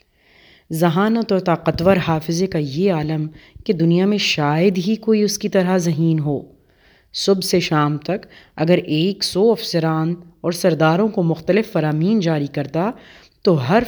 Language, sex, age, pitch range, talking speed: Urdu, female, 30-49, 155-210 Hz, 150 wpm